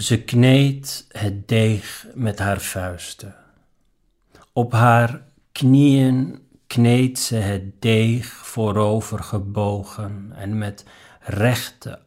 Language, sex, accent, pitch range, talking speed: Dutch, male, Dutch, 100-115 Hz, 90 wpm